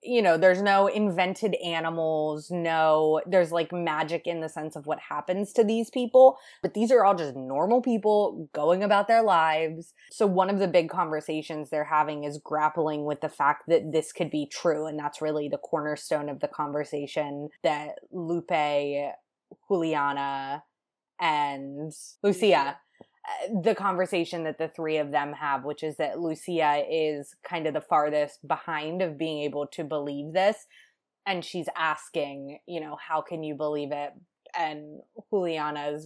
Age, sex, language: 20-39, female, English